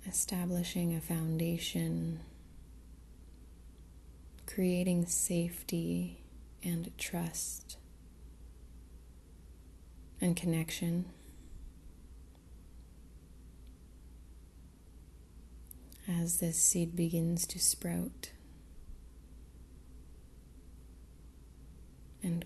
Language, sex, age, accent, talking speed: English, female, 30-49, American, 45 wpm